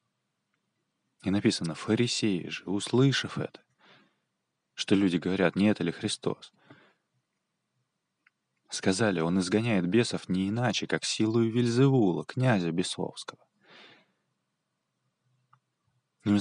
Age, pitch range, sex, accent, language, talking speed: 20-39, 90-115 Hz, male, native, Russian, 90 wpm